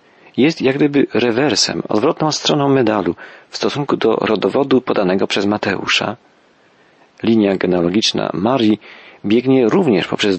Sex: male